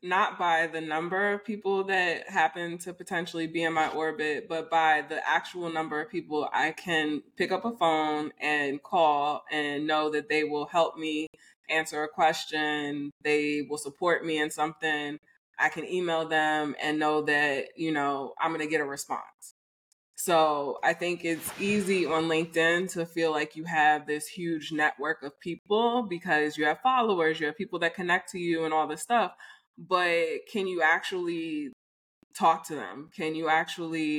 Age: 20-39